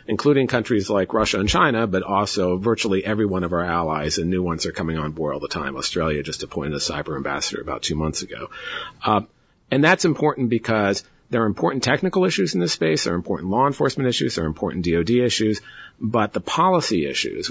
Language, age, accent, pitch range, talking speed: English, 40-59, American, 85-110 Hz, 210 wpm